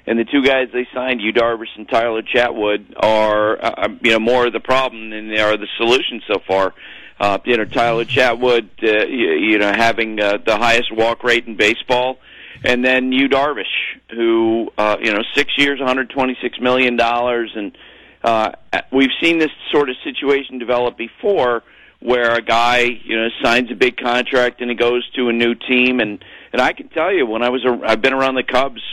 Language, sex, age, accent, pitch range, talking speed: English, male, 50-69, American, 115-130 Hz, 205 wpm